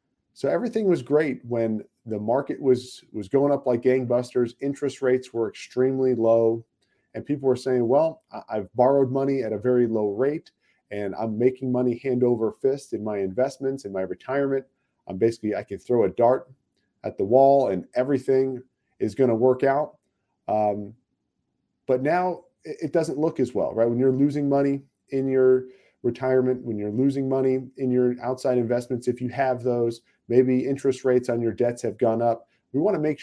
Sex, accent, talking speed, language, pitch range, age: male, American, 185 wpm, English, 115-135 Hz, 40-59